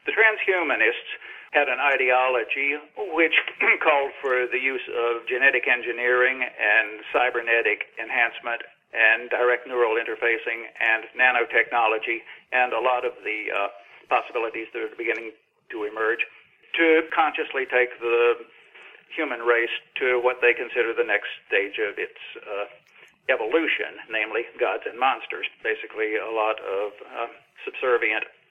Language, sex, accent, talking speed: English, male, American, 130 wpm